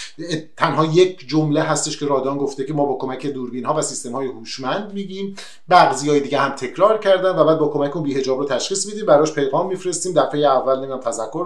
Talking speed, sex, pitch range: 210 wpm, male, 130-170 Hz